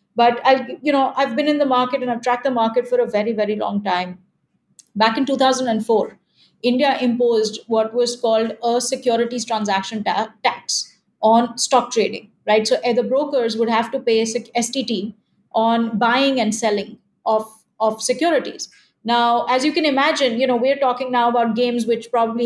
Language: English